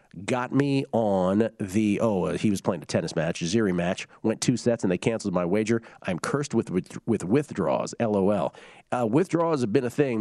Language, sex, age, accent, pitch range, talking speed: English, male, 40-59, American, 100-125 Hz, 205 wpm